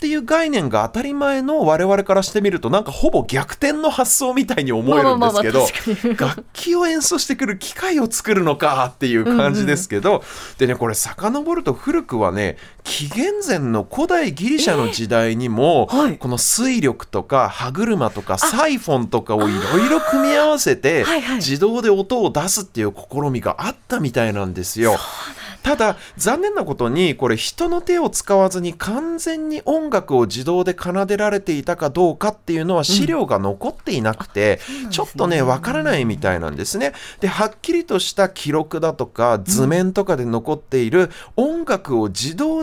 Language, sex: Japanese, male